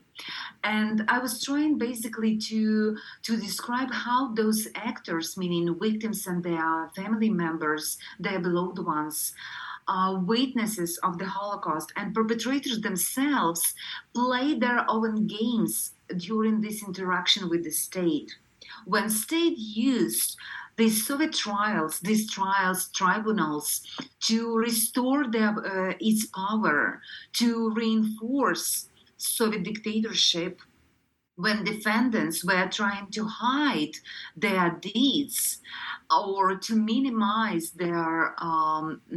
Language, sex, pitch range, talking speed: English, female, 180-230 Hz, 105 wpm